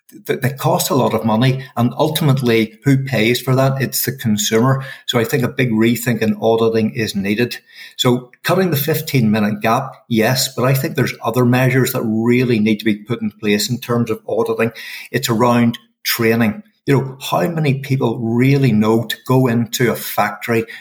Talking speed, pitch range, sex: 185 wpm, 110-130 Hz, male